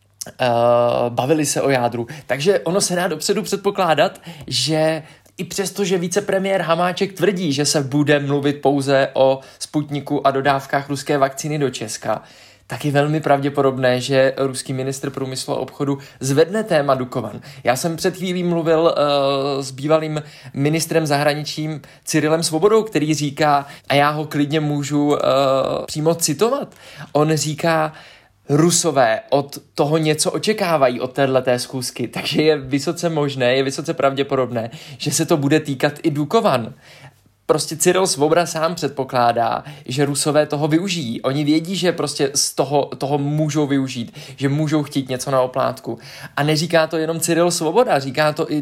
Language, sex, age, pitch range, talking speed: Czech, male, 20-39, 135-160 Hz, 150 wpm